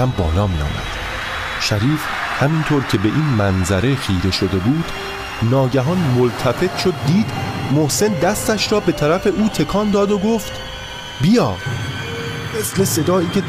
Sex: male